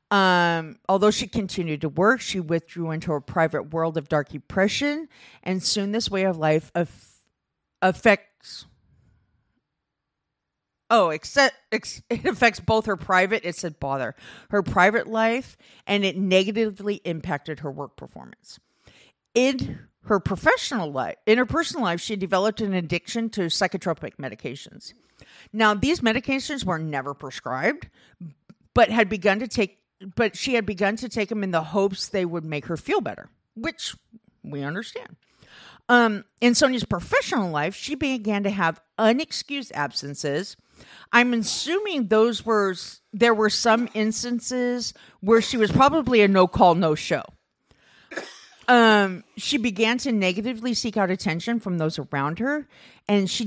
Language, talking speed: English, 145 wpm